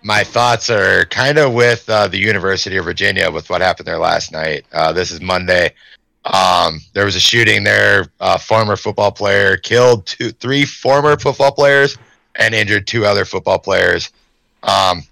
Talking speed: 175 wpm